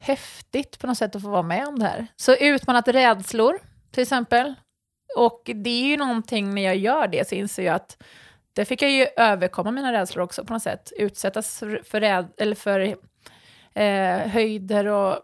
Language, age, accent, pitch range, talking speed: Swedish, 20-39, native, 190-235 Hz, 190 wpm